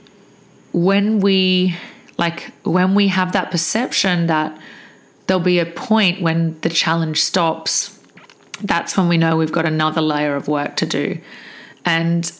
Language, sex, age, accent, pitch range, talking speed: English, female, 30-49, Australian, 165-195 Hz, 145 wpm